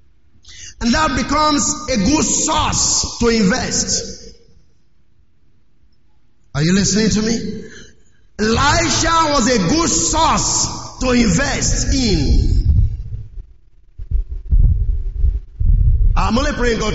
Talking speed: 90 wpm